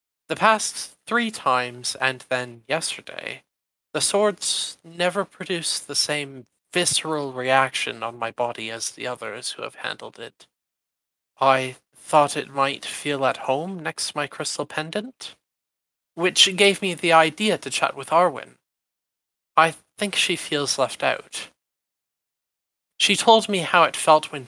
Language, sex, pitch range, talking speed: English, male, 125-170 Hz, 145 wpm